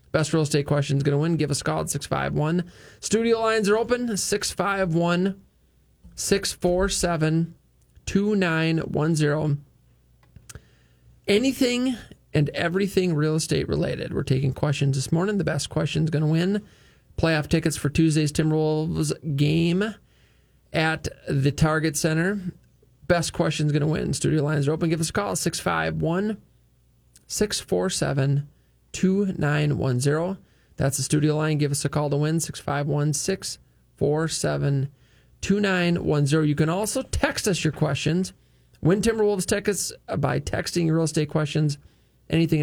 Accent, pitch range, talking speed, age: American, 145-185 Hz, 130 wpm, 20-39